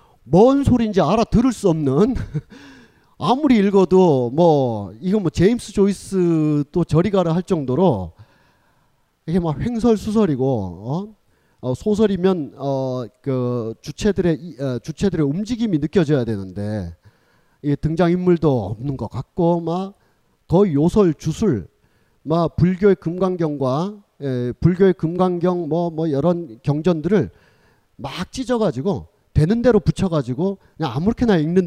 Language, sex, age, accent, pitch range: Korean, male, 40-59, native, 130-185 Hz